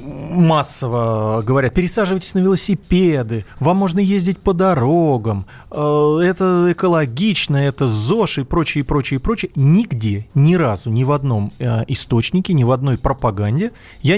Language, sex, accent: Russian, male, native